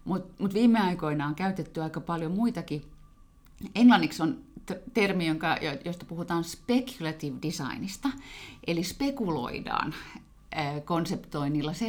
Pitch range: 145-195 Hz